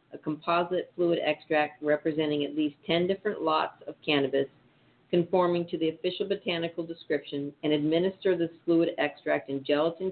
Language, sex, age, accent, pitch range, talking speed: English, female, 50-69, American, 140-170 Hz, 150 wpm